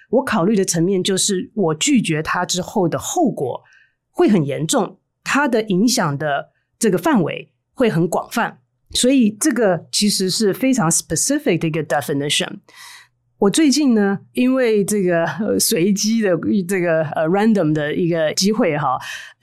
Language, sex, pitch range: Chinese, female, 165-230 Hz